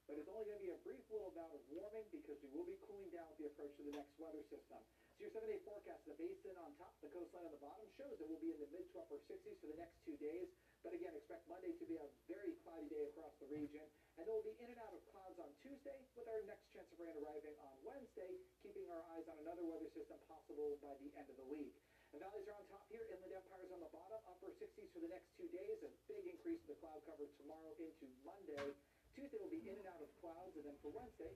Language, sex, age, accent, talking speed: English, male, 40-59, American, 270 wpm